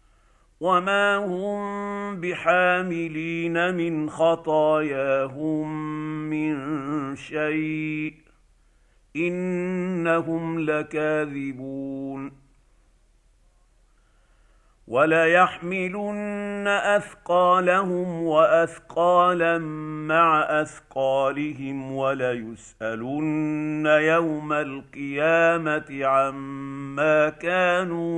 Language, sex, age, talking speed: Arabic, male, 50-69, 40 wpm